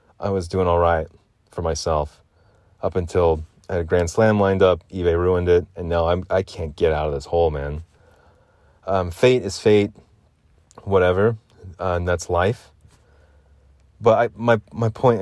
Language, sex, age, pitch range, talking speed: English, male, 30-49, 85-105 Hz, 170 wpm